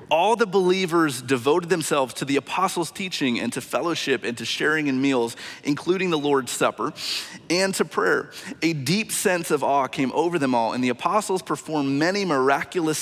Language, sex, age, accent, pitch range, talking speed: English, male, 30-49, American, 135-180 Hz, 180 wpm